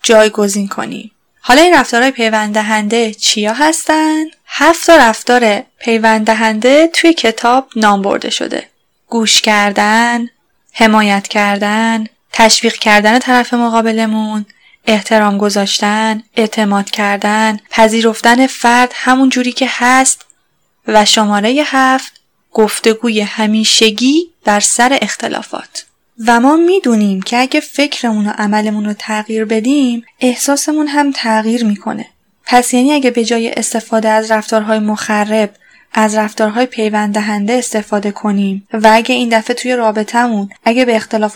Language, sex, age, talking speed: Persian, female, 10-29, 120 wpm